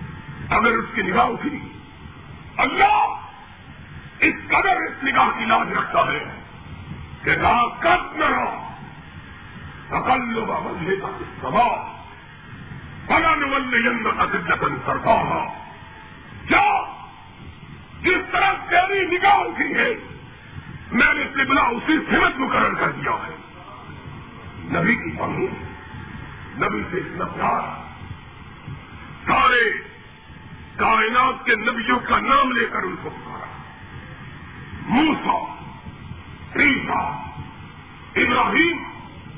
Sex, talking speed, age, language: male, 90 wpm, 50-69, Urdu